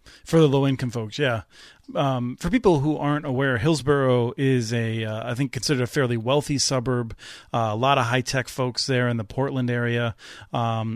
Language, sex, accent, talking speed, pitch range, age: English, male, American, 195 wpm, 125-150 Hz, 30-49